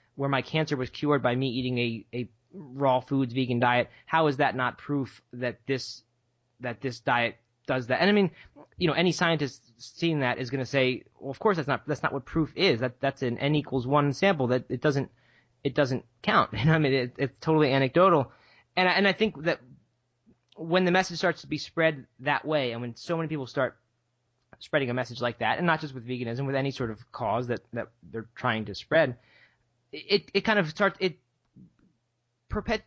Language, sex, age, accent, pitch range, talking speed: English, male, 20-39, American, 120-165 Hz, 215 wpm